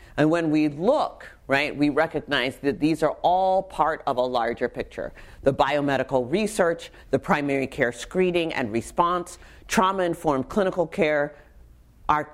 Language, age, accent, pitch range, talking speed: English, 40-59, American, 130-180 Hz, 140 wpm